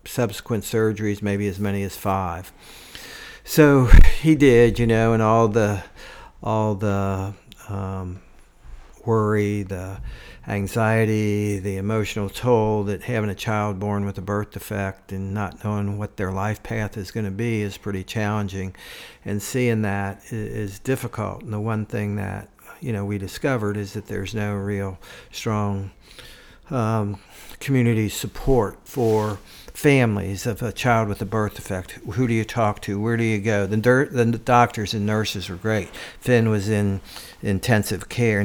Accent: American